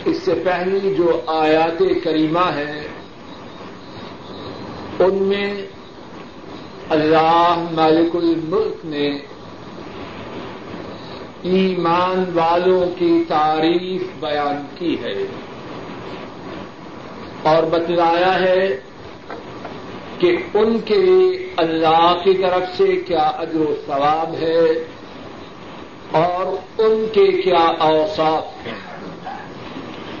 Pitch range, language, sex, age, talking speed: 165-205 Hz, Urdu, male, 50-69, 80 wpm